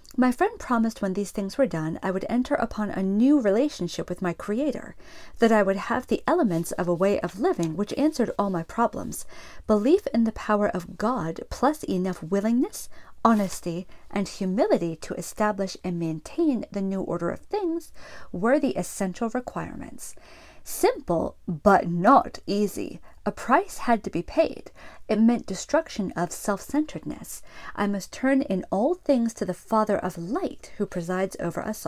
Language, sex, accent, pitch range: English, female, American, 195-275 Hz